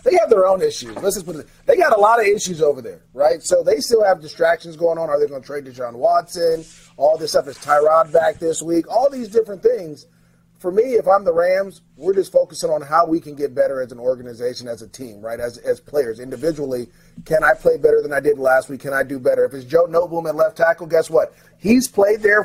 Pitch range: 160-235 Hz